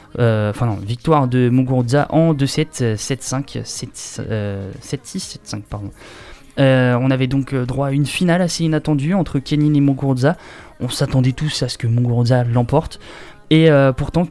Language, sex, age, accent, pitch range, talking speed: French, male, 20-39, French, 120-155 Hz, 160 wpm